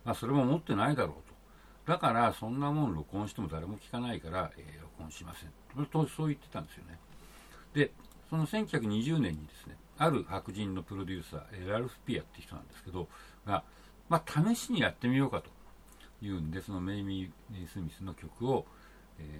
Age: 60-79